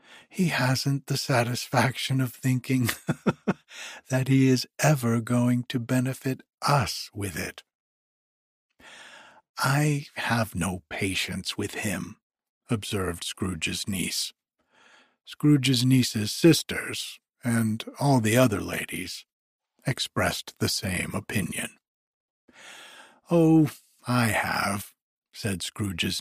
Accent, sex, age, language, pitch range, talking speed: American, male, 60-79, English, 110-145 Hz, 95 wpm